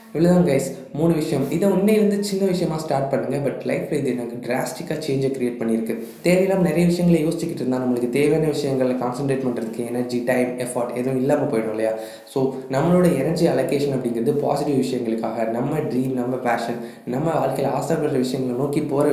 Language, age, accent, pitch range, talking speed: Tamil, 20-39, native, 125-150 Hz, 165 wpm